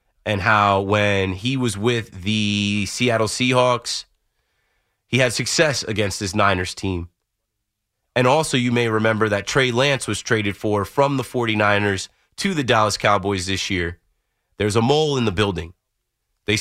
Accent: American